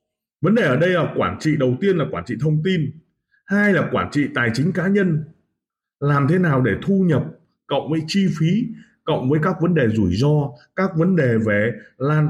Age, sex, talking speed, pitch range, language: 20-39, male, 215 wpm, 120-175 Hz, Vietnamese